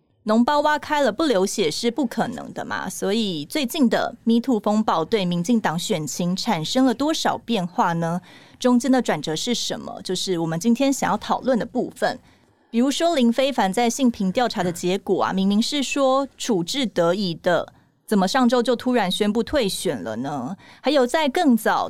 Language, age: Chinese, 30-49